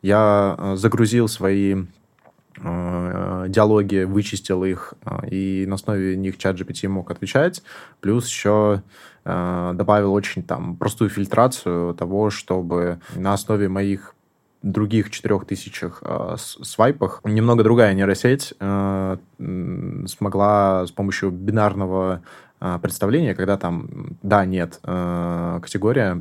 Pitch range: 95-110 Hz